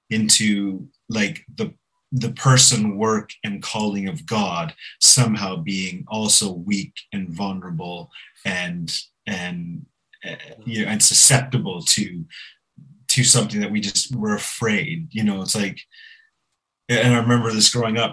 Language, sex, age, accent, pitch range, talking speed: English, male, 30-49, American, 105-135 Hz, 135 wpm